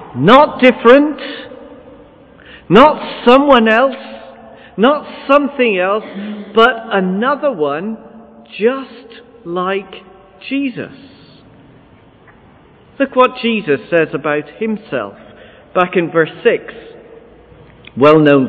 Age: 50-69